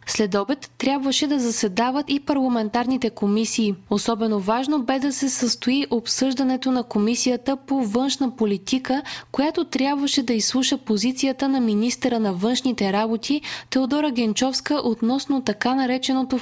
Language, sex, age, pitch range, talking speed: Bulgarian, female, 20-39, 205-265 Hz, 130 wpm